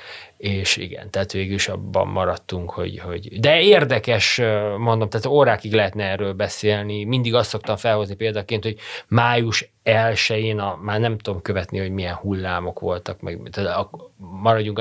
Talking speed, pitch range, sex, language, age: 145 wpm, 95-115 Hz, male, Hungarian, 30-49